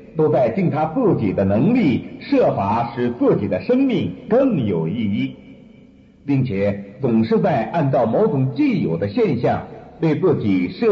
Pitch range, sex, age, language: 120-190 Hz, male, 50-69, Chinese